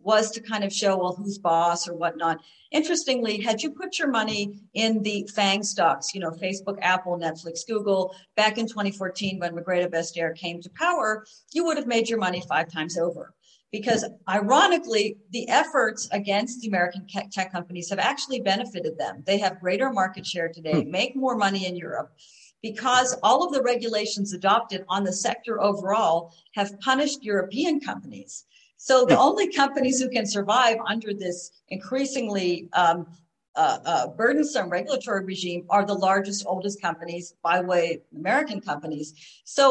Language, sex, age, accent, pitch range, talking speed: English, female, 50-69, American, 175-225 Hz, 165 wpm